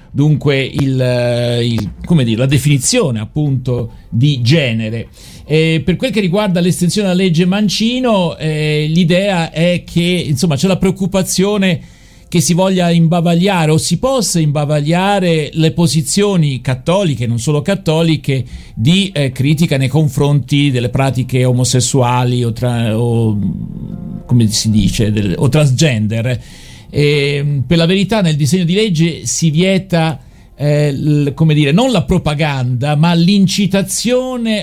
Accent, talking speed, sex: native, 135 wpm, male